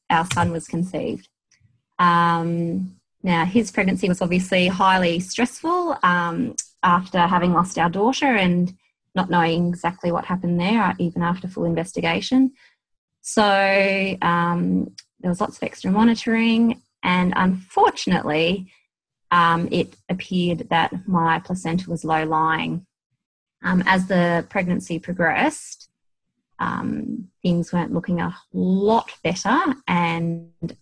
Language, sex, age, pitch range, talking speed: English, female, 20-39, 165-190 Hz, 115 wpm